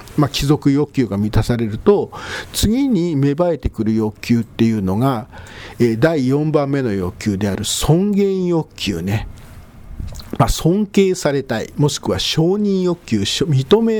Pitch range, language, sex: 105-160 Hz, Japanese, male